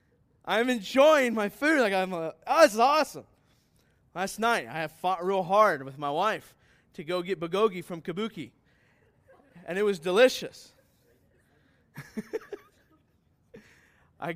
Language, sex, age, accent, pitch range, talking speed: English, male, 20-39, American, 165-220 Hz, 135 wpm